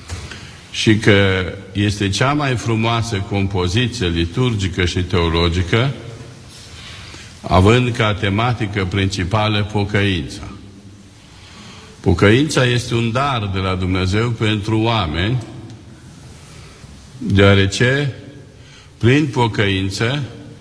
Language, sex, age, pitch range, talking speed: Romanian, male, 50-69, 100-120 Hz, 80 wpm